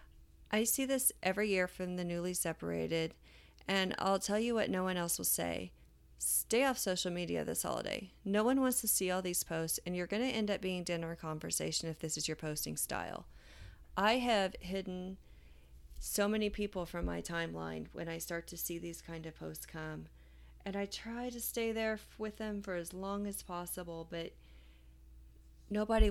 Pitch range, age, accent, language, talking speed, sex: 155-215 Hz, 30-49, American, English, 190 wpm, female